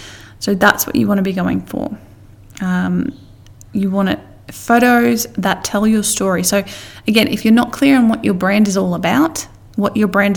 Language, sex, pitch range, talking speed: English, female, 175-205 Hz, 195 wpm